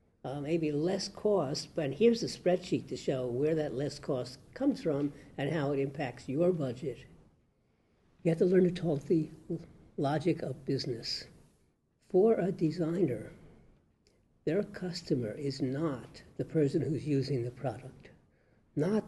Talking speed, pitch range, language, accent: 145 wpm, 135-165 Hz, English, American